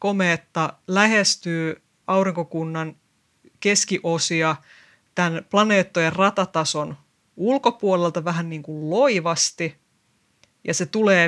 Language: Finnish